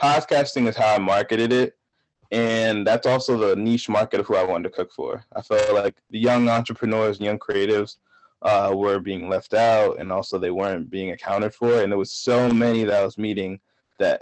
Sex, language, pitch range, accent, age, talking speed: male, English, 105-130 Hz, American, 20-39, 210 wpm